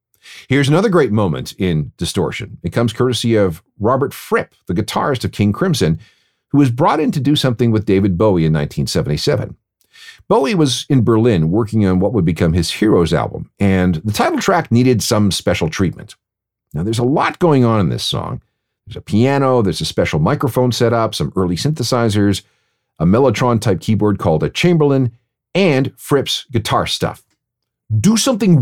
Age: 50-69